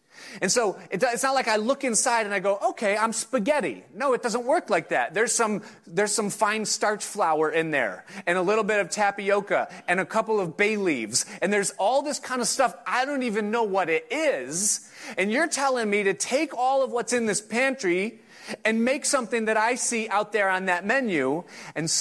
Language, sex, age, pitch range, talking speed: English, male, 30-49, 185-245 Hz, 215 wpm